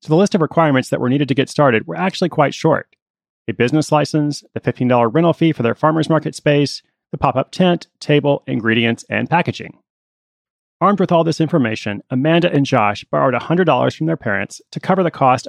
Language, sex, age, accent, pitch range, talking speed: English, male, 30-49, American, 115-155 Hz, 200 wpm